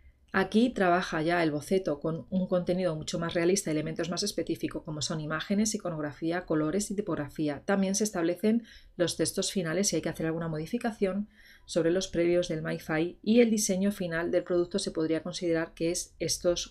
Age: 30-49